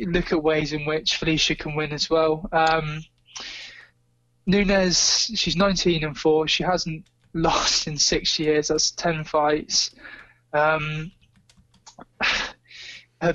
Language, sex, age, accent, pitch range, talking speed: English, male, 20-39, British, 150-175 Hz, 120 wpm